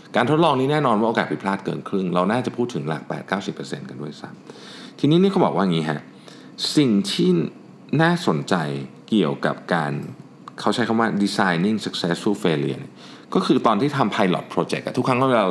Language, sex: Thai, male